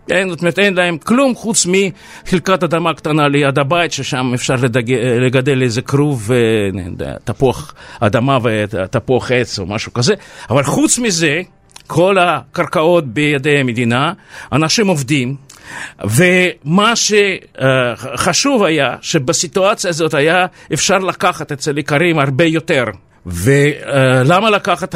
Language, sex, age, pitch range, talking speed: Hebrew, male, 50-69, 135-190 Hz, 115 wpm